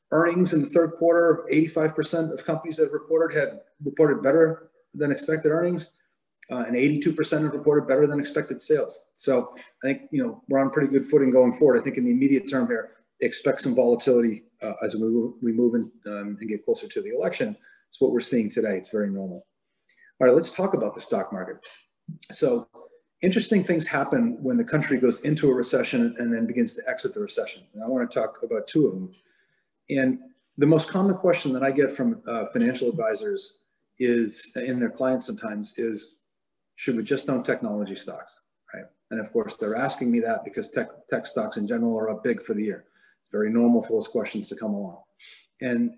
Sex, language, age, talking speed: male, English, 30-49, 205 wpm